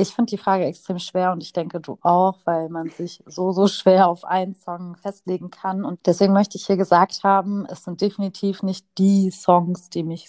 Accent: German